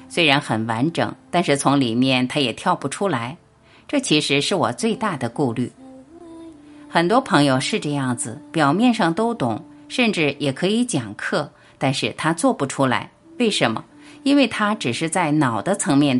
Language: Chinese